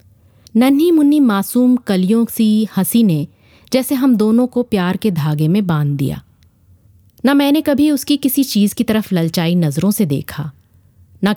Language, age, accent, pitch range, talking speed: Hindi, 30-49, native, 135-225 Hz, 160 wpm